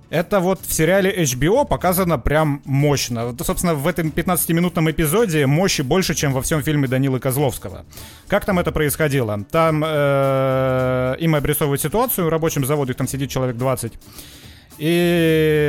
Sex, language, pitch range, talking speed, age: male, Russian, 125-160 Hz, 140 wpm, 30-49